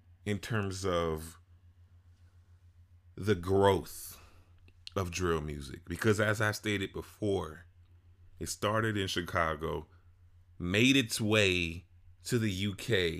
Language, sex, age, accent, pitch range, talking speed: English, male, 30-49, American, 90-105 Hz, 105 wpm